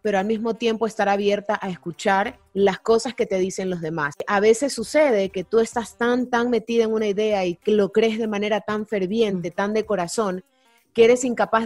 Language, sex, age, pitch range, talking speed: Spanish, female, 30-49, 195-235 Hz, 210 wpm